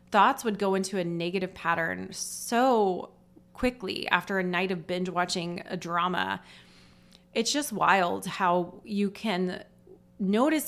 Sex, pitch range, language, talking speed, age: female, 185-230 Hz, English, 130 wpm, 20-39